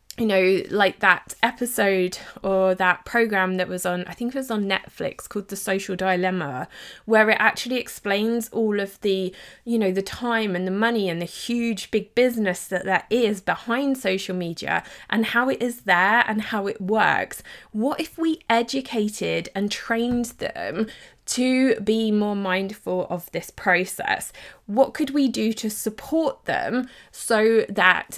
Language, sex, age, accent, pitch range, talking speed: English, female, 20-39, British, 190-235 Hz, 165 wpm